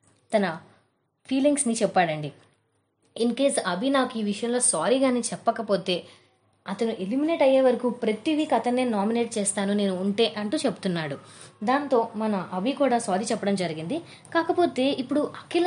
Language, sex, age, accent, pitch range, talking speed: Telugu, female, 20-39, native, 185-245 Hz, 130 wpm